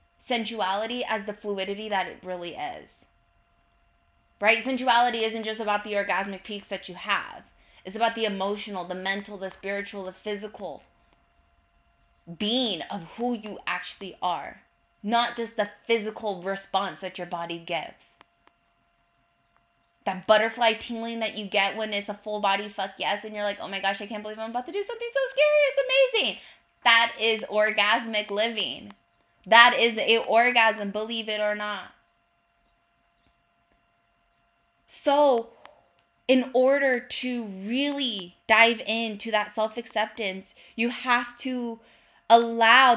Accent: American